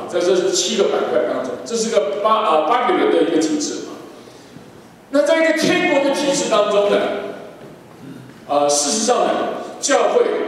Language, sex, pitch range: Chinese, male, 205-335 Hz